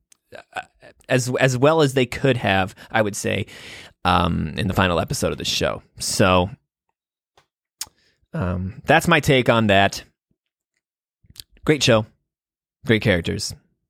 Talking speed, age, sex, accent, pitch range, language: 130 wpm, 20-39, male, American, 105-150 Hz, English